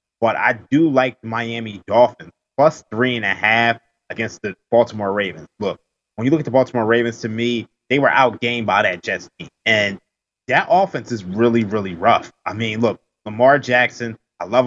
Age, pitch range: 20-39, 105-125 Hz